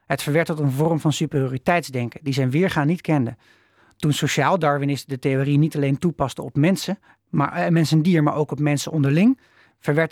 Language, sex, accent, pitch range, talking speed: Dutch, male, Dutch, 140-180 Hz, 195 wpm